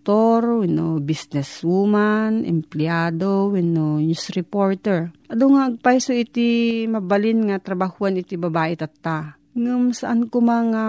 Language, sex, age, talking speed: Filipino, female, 40-59, 110 wpm